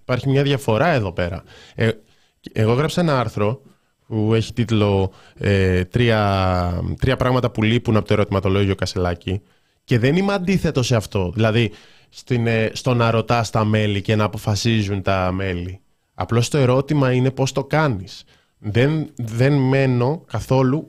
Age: 20-39